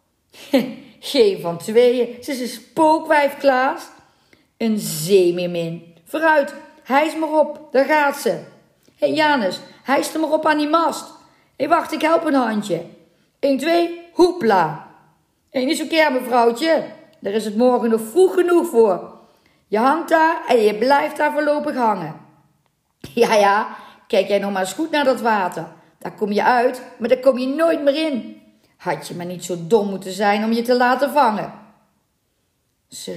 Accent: Dutch